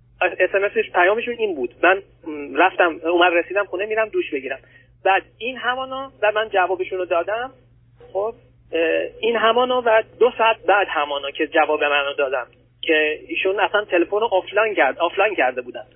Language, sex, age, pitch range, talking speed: Persian, male, 30-49, 150-200 Hz, 155 wpm